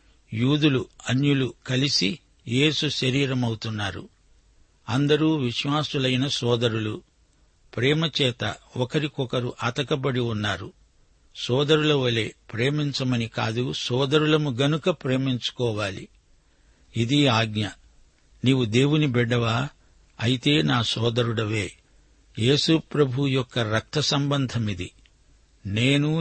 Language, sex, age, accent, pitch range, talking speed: Telugu, male, 60-79, native, 115-140 Hz, 75 wpm